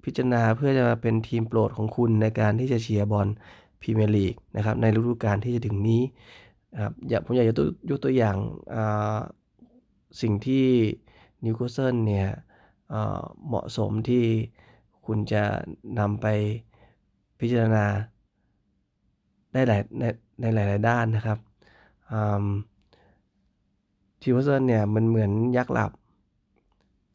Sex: male